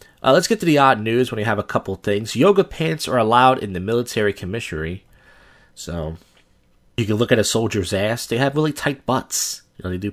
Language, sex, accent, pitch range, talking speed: English, male, American, 90-130 Hz, 225 wpm